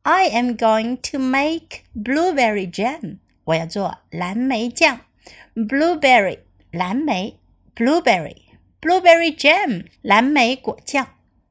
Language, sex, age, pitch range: Chinese, female, 60-79, 185-290 Hz